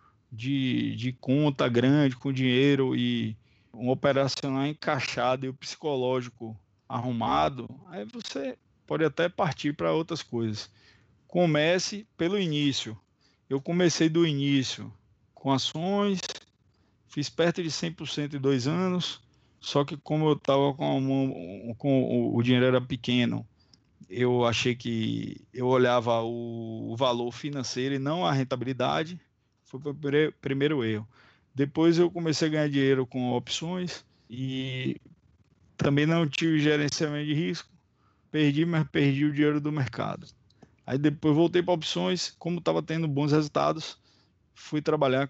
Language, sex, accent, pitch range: Portuguese, male, Brazilian, 120-150 Hz